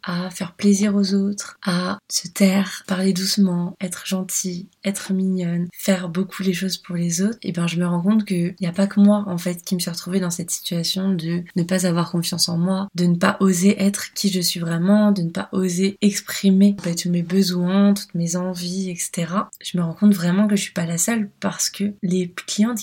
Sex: female